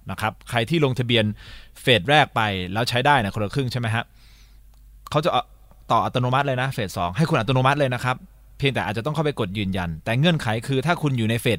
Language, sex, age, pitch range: Thai, male, 20-39, 105-140 Hz